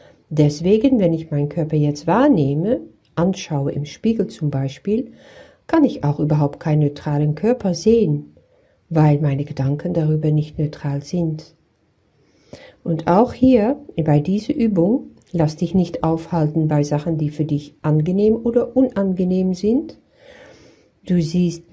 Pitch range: 145-180 Hz